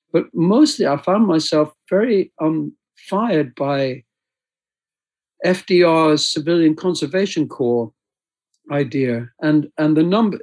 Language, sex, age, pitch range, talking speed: English, male, 60-79, 130-160 Hz, 105 wpm